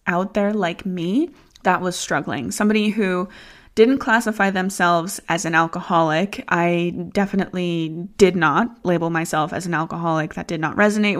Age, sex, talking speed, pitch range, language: 20-39, female, 150 wpm, 180-230 Hz, English